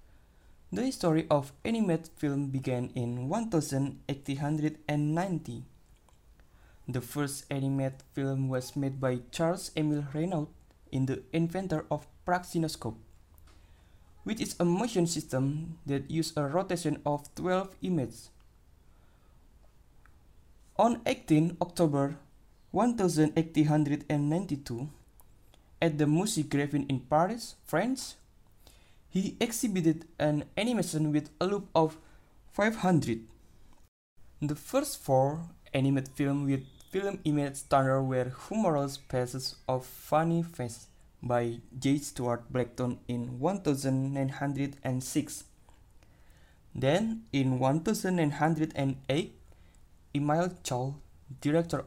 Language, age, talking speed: English, 20-39, 95 wpm